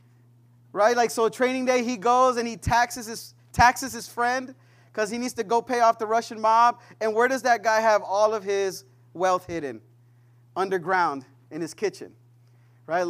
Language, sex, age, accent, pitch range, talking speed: English, male, 30-49, American, 180-260 Hz, 185 wpm